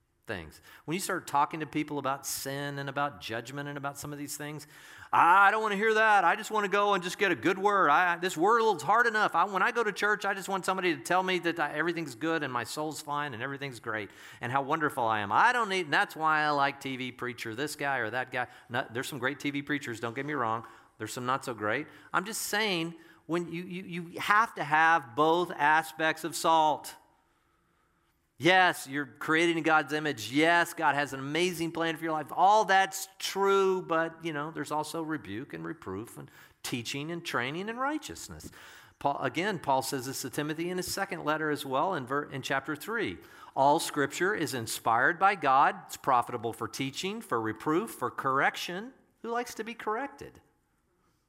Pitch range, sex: 140-180 Hz, male